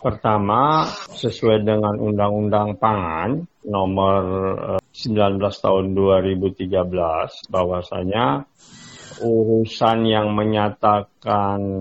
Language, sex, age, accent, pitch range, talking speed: Indonesian, male, 50-69, native, 95-115 Hz, 65 wpm